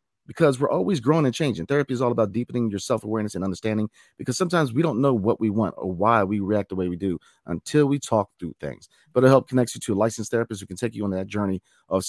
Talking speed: 255 wpm